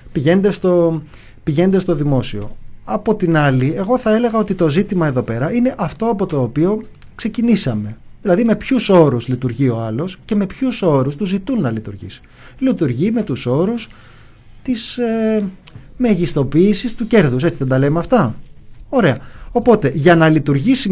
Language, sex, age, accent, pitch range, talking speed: Greek, male, 20-39, native, 130-215 Hz, 160 wpm